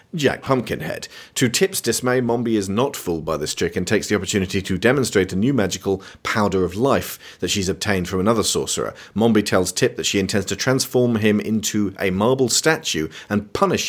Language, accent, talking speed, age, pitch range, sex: English, British, 195 wpm, 40-59, 95-130 Hz, male